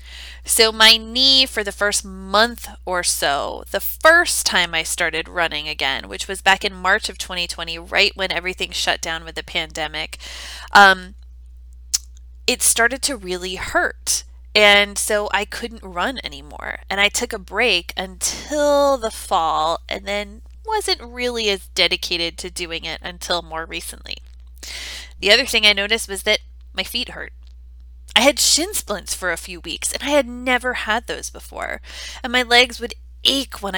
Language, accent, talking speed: English, American, 165 wpm